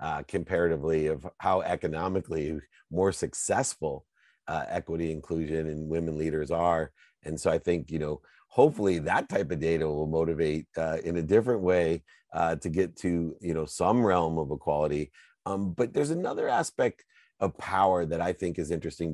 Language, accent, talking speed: English, American, 170 wpm